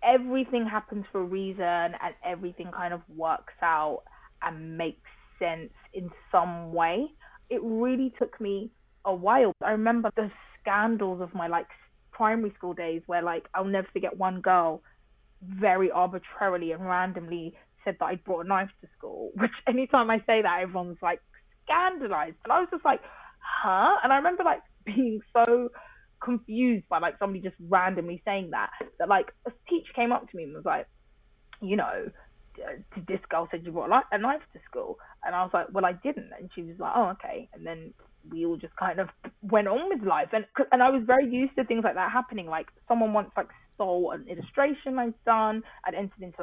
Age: 20-39